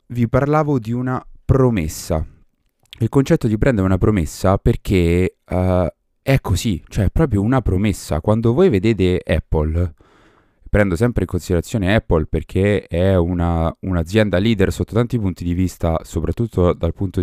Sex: male